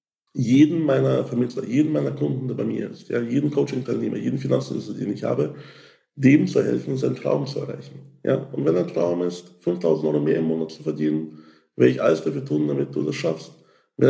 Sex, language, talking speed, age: male, German, 205 wpm, 50-69